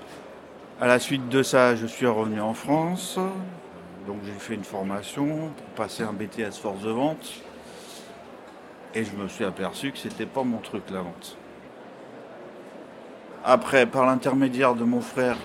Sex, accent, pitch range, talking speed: male, French, 100-130 Hz, 155 wpm